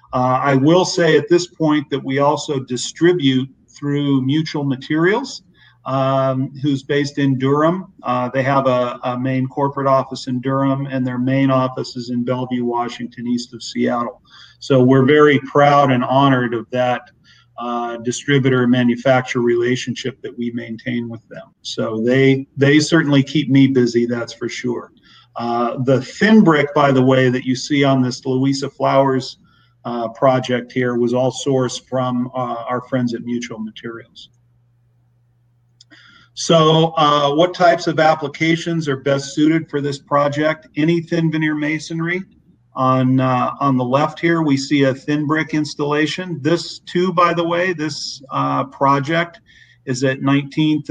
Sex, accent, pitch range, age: male, American, 125-150 Hz, 40-59